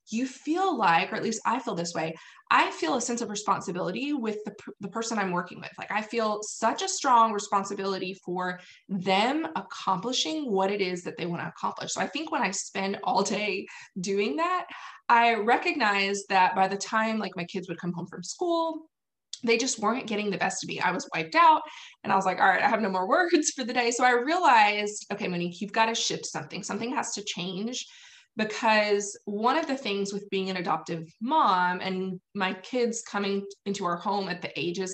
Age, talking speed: 20-39, 215 wpm